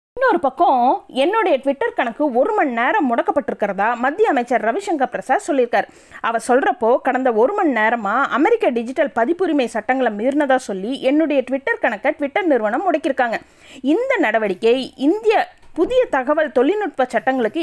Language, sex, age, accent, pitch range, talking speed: Tamil, female, 20-39, native, 230-335 Hz, 125 wpm